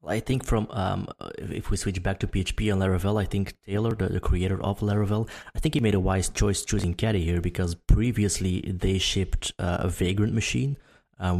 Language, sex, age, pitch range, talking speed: English, male, 20-39, 90-105 Hz, 205 wpm